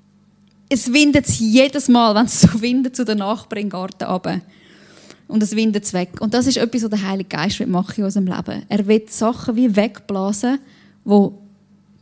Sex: female